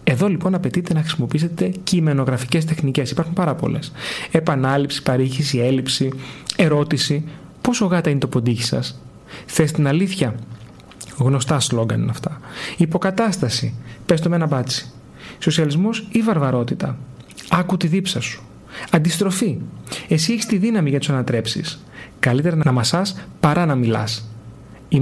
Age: 30-49